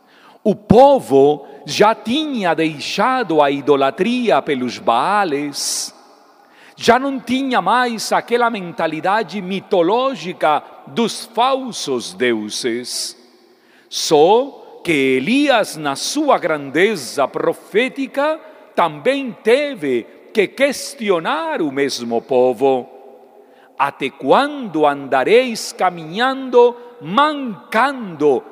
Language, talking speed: Portuguese, 80 wpm